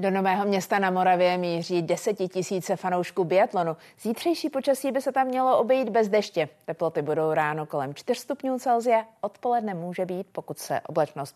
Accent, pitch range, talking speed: native, 165-220 Hz, 160 wpm